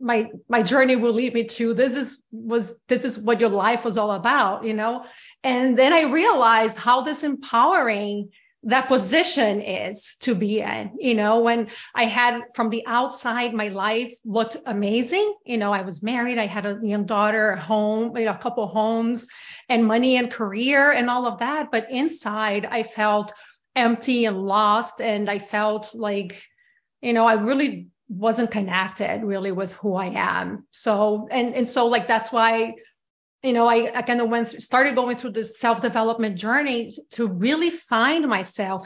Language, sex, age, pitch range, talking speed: English, female, 30-49, 210-245 Hz, 180 wpm